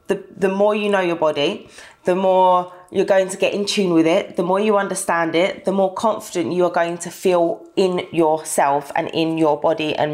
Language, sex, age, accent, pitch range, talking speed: English, female, 20-39, British, 160-205 Hz, 220 wpm